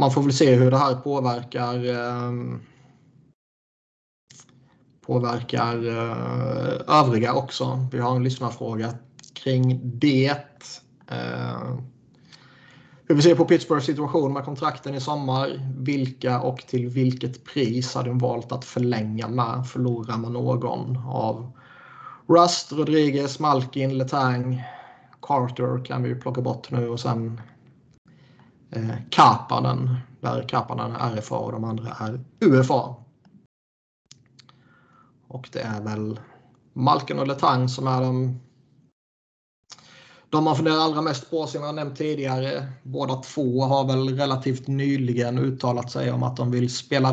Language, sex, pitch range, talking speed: Swedish, male, 120-135 Hz, 130 wpm